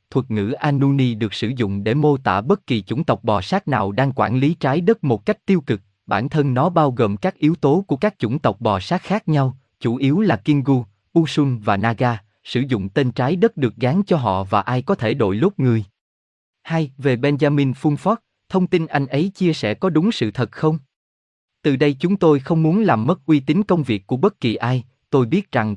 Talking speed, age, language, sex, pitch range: 230 wpm, 20-39, Vietnamese, male, 115-160 Hz